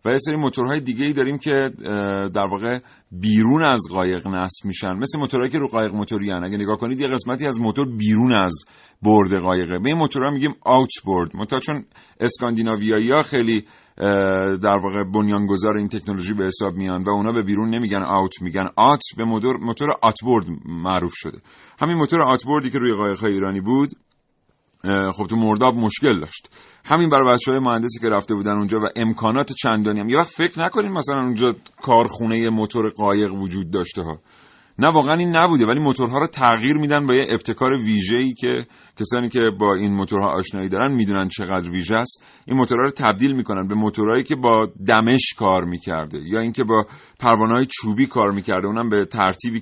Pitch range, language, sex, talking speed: 100-130 Hz, Persian, male, 175 wpm